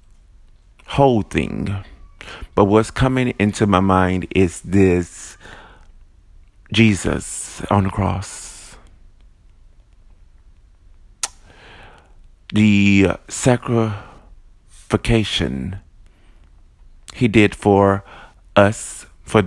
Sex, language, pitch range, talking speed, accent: male, English, 90-105 Hz, 70 wpm, American